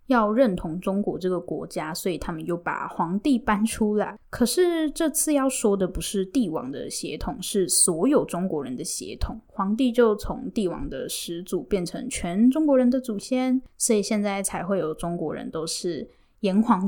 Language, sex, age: Chinese, female, 10-29